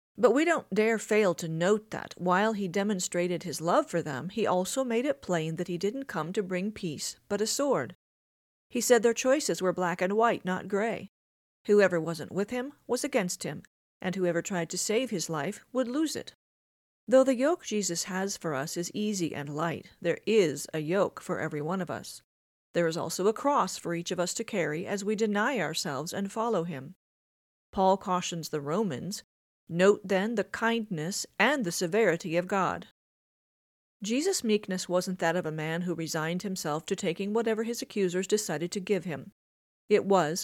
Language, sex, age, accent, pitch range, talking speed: English, female, 40-59, American, 170-215 Hz, 190 wpm